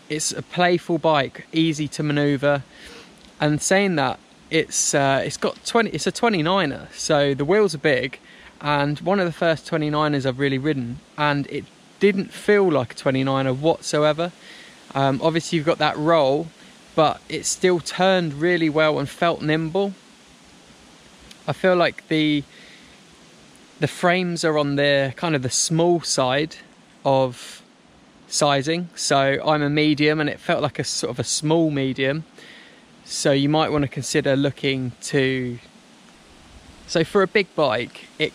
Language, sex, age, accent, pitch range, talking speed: English, male, 20-39, British, 140-170 Hz, 155 wpm